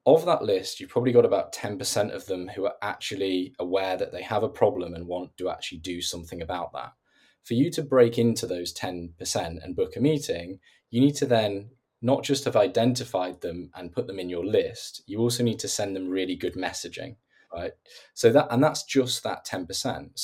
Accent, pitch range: British, 90-130 Hz